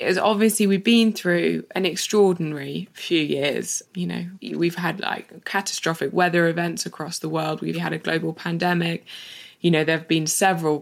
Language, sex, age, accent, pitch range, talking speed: English, female, 20-39, British, 160-200 Hz, 165 wpm